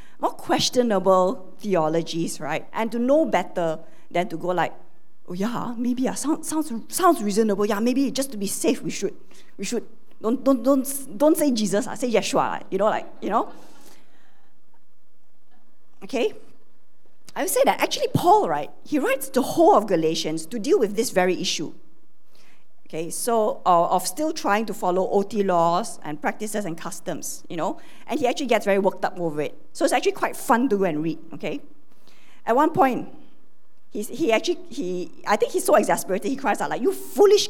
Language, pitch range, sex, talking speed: English, 195-300 Hz, female, 190 wpm